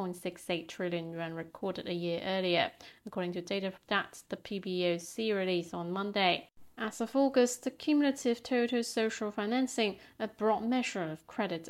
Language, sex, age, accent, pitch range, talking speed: English, female, 40-59, British, 180-230 Hz, 150 wpm